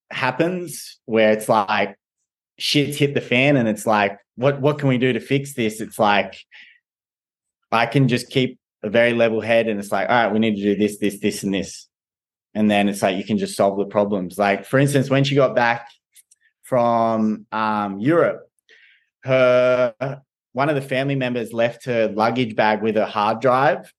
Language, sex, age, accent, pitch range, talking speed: English, male, 20-39, Australian, 110-130 Hz, 195 wpm